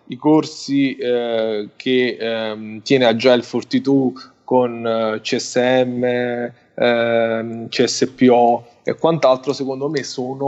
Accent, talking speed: native, 105 wpm